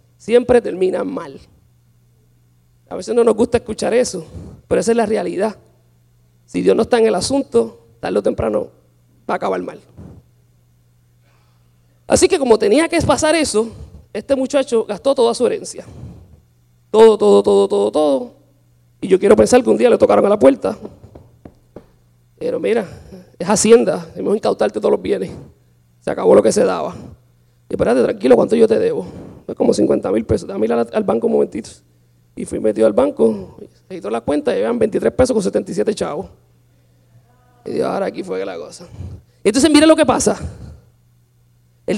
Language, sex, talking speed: English, male, 175 wpm